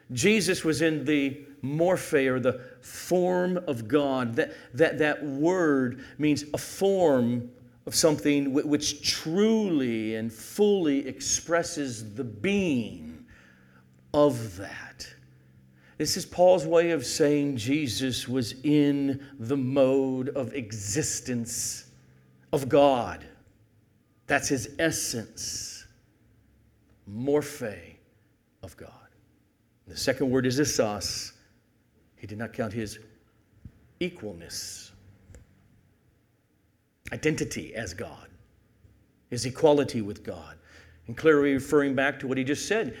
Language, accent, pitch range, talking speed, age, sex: English, American, 110-145 Hz, 105 wpm, 50-69, male